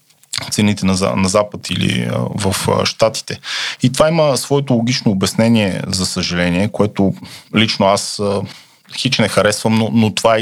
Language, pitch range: Bulgarian, 105-120 Hz